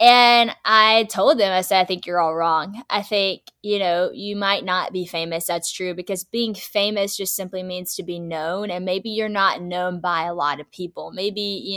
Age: 10-29